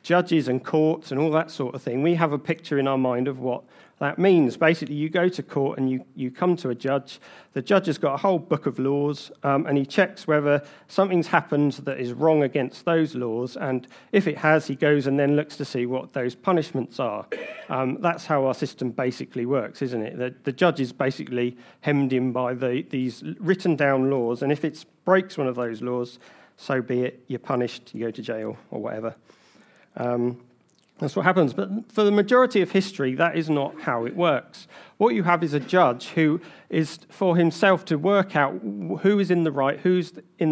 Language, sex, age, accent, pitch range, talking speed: English, male, 40-59, British, 135-175 Hz, 215 wpm